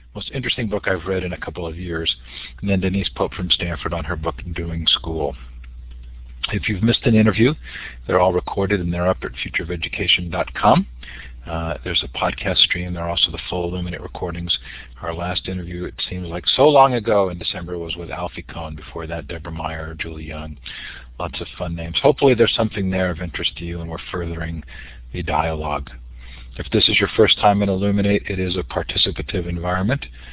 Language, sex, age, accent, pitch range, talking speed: English, male, 50-69, American, 80-95 Hz, 190 wpm